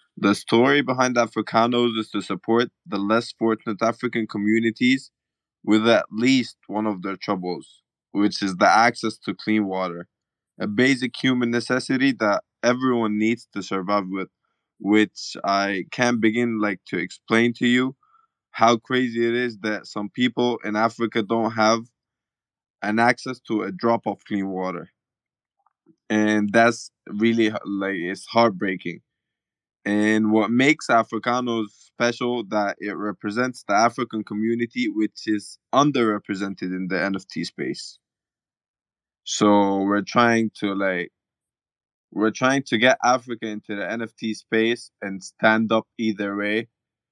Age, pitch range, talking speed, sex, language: 20-39, 105-120 Hz, 135 wpm, male, English